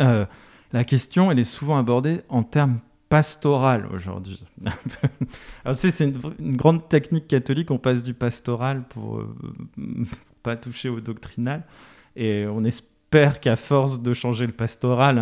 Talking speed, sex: 160 wpm, male